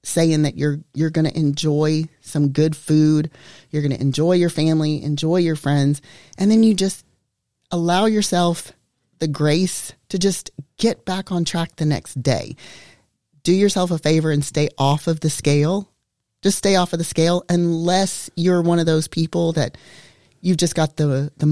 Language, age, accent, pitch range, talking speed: English, 30-49, American, 145-170 Hz, 180 wpm